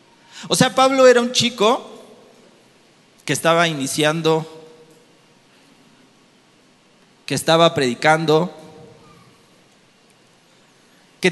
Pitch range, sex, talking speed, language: 155-220 Hz, male, 70 wpm, Spanish